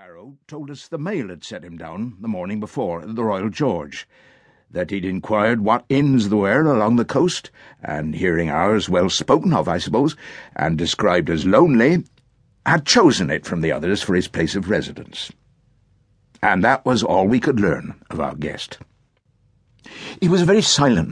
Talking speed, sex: 180 wpm, male